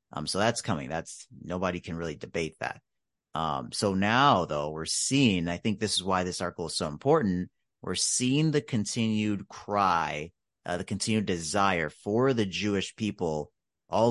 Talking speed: 170 wpm